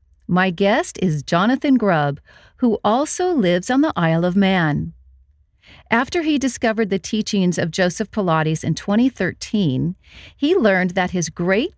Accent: American